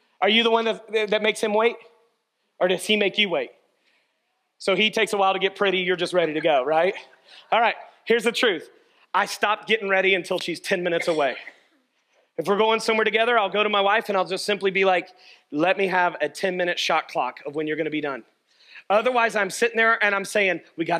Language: English